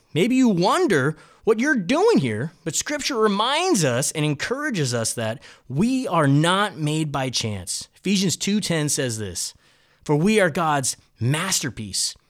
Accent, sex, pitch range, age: American, male, 145-235 Hz, 30-49